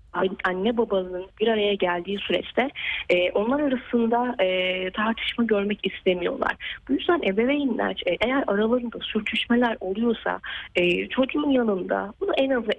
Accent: native